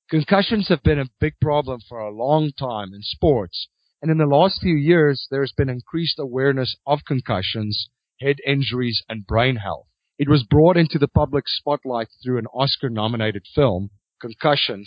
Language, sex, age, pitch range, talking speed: English, male, 40-59, 115-145 Hz, 175 wpm